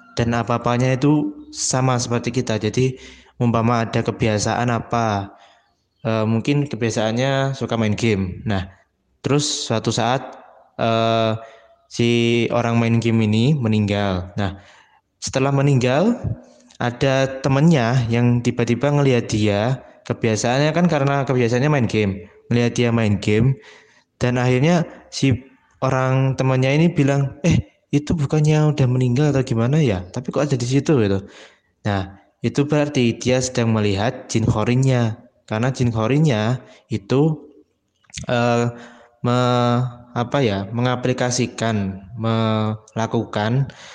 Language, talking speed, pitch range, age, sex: Indonesian, 115 wpm, 110-130 Hz, 20-39, male